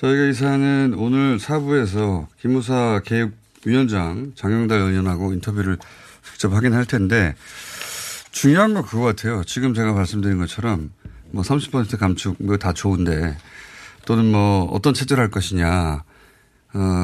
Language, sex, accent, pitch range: Korean, male, native, 100-140 Hz